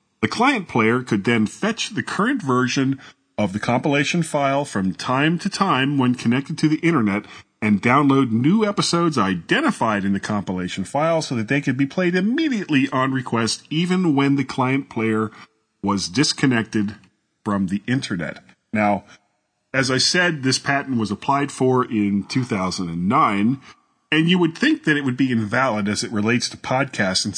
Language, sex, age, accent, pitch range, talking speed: English, male, 40-59, American, 110-160 Hz, 165 wpm